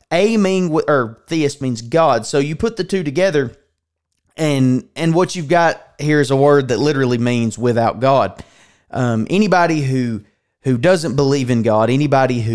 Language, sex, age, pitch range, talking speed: English, male, 30-49, 115-150 Hz, 170 wpm